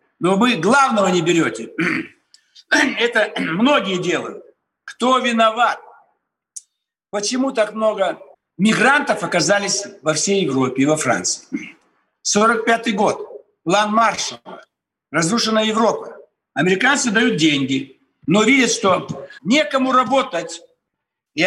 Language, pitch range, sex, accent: Russian, 180-250 Hz, male, native